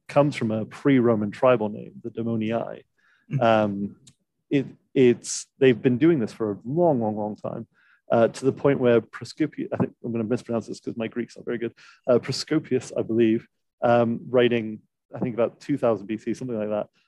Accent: British